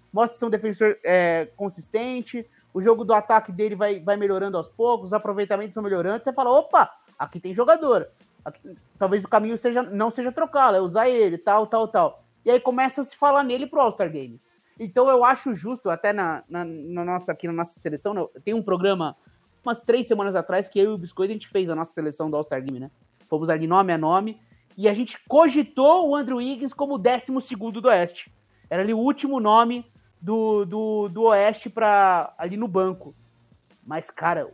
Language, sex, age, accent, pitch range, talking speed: English, male, 20-39, Brazilian, 165-225 Hz, 195 wpm